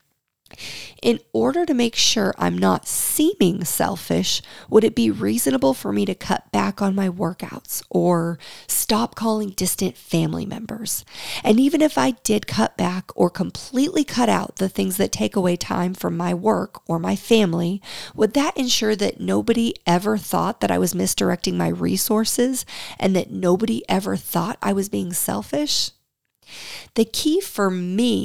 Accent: American